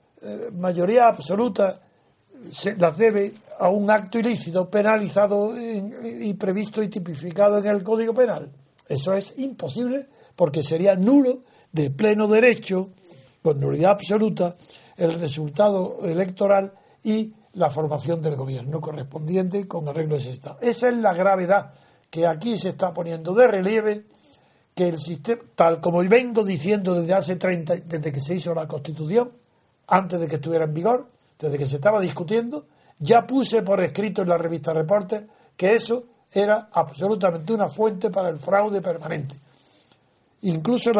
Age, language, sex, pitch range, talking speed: 60-79, Spanish, male, 165-215 Hz, 150 wpm